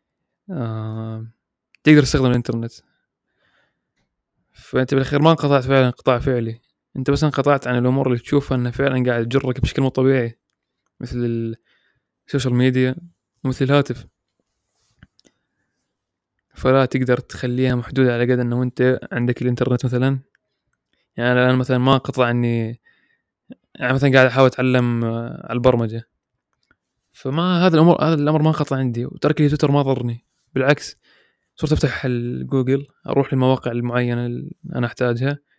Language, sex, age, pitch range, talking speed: Arabic, male, 20-39, 125-145 Hz, 130 wpm